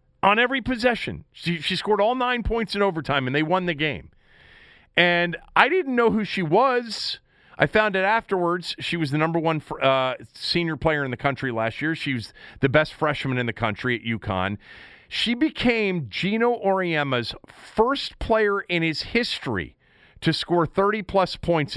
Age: 40-59